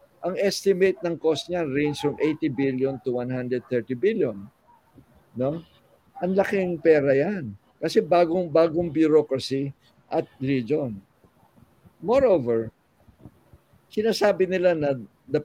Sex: male